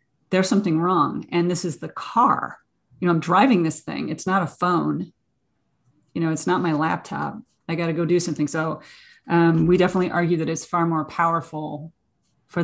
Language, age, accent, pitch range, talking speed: English, 30-49, American, 160-185 Hz, 190 wpm